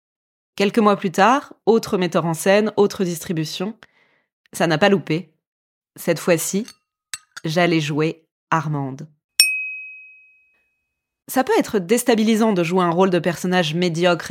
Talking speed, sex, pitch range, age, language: 125 wpm, female, 165-230 Hz, 20-39, French